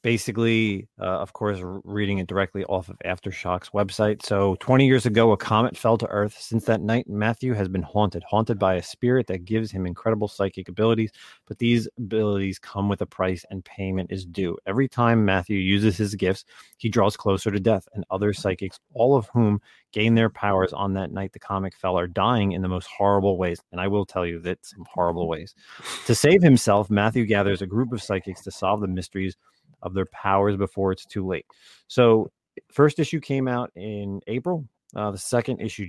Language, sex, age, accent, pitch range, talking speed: English, male, 30-49, American, 95-115 Hz, 200 wpm